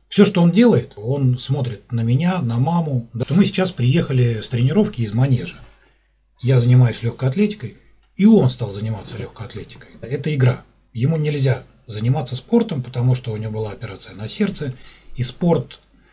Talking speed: 160 wpm